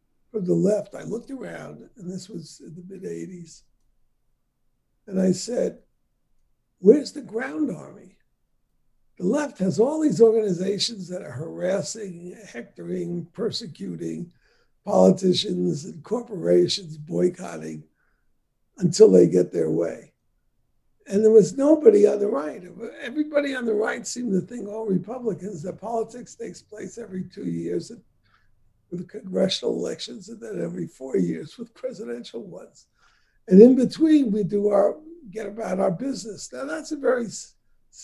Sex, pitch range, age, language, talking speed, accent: male, 175-230 Hz, 60-79, English, 140 wpm, American